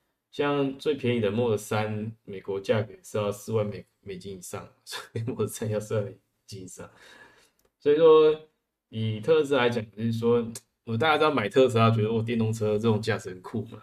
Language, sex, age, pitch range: Chinese, male, 20-39, 100-120 Hz